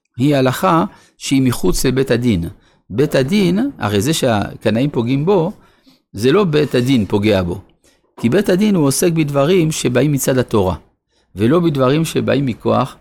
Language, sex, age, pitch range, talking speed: Hebrew, male, 50-69, 110-155 Hz, 150 wpm